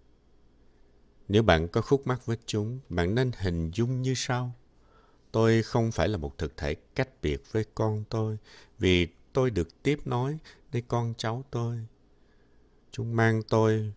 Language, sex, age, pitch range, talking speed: Vietnamese, male, 60-79, 75-115 Hz, 160 wpm